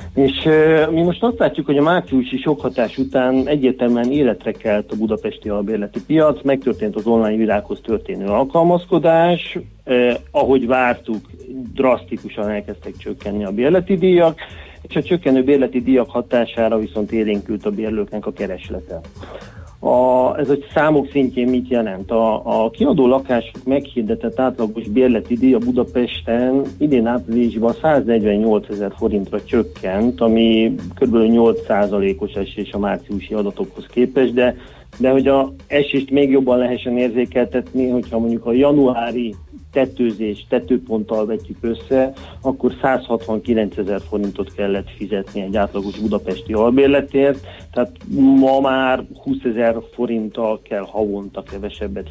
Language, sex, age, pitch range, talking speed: Hungarian, male, 30-49, 110-135 Hz, 130 wpm